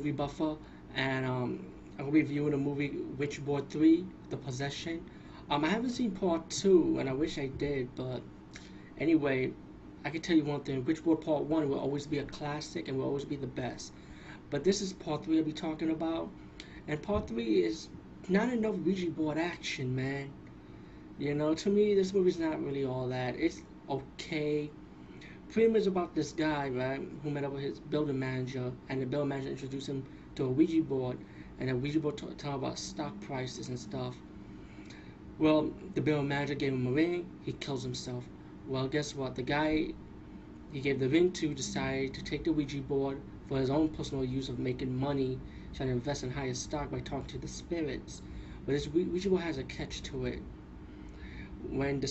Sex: male